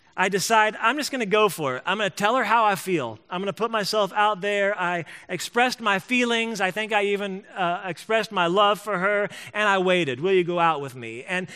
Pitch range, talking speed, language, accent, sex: 170-215 Hz, 250 wpm, English, American, male